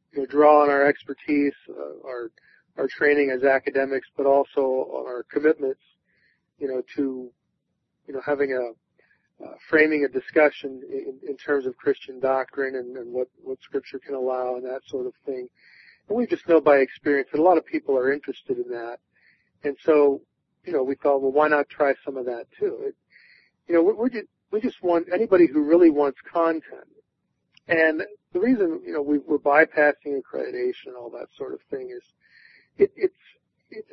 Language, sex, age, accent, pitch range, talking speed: English, male, 40-59, American, 135-185 Hz, 190 wpm